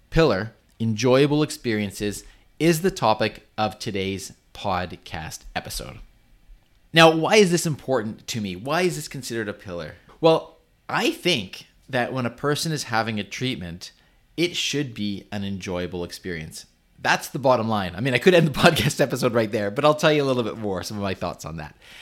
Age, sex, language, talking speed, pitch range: 30-49, male, English, 185 wpm, 95-130 Hz